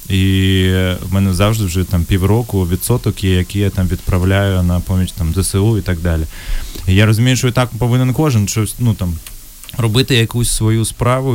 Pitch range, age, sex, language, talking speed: 95-120 Hz, 20-39, male, Ukrainian, 185 wpm